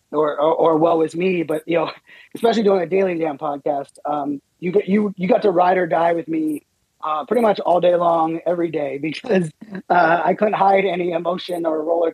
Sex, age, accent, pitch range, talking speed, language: male, 30-49, American, 160-200 Hz, 220 wpm, English